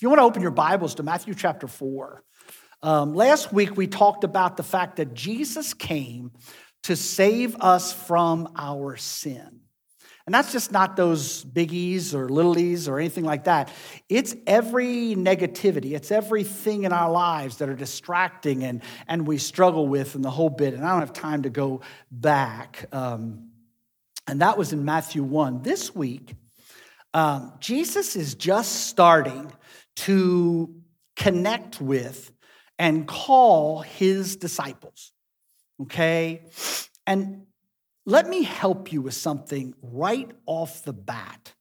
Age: 50-69